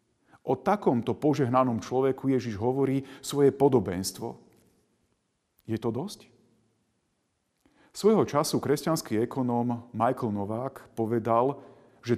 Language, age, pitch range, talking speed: Slovak, 40-59, 115-140 Hz, 95 wpm